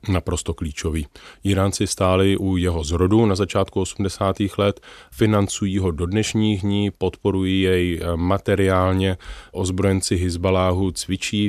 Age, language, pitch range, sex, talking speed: 30-49, Czech, 90-105 Hz, male, 115 wpm